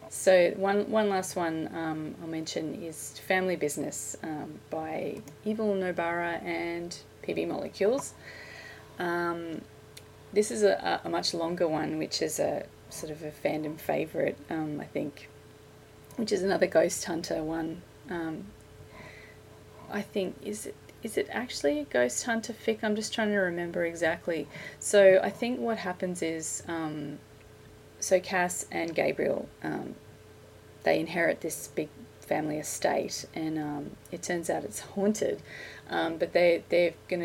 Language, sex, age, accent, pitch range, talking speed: English, female, 30-49, Australian, 145-175 Hz, 145 wpm